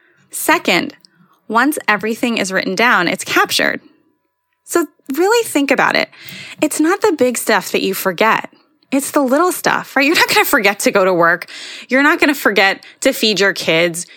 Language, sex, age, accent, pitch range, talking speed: English, female, 20-39, American, 190-275 Hz, 185 wpm